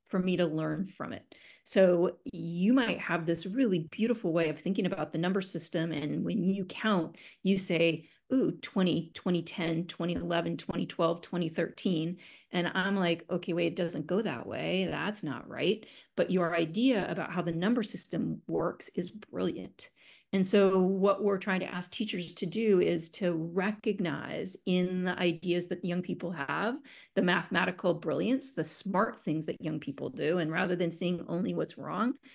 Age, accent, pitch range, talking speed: 30-49, American, 170-200 Hz, 170 wpm